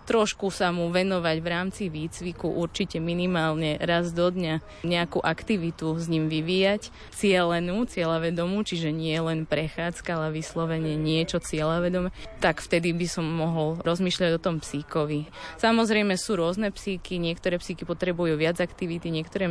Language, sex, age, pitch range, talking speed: Slovak, female, 20-39, 165-185 Hz, 140 wpm